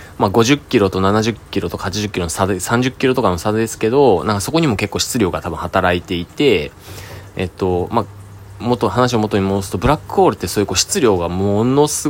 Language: Japanese